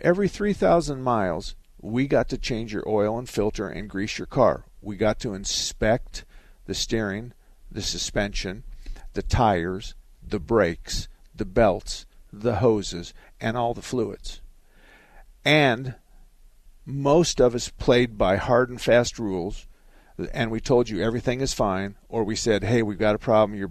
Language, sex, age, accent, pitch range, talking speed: English, male, 50-69, American, 100-120 Hz, 155 wpm